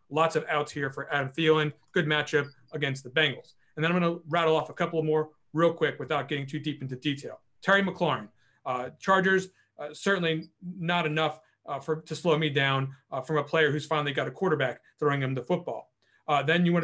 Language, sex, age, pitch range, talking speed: English, male, 30-49, 140-170 Hz, 215 wpm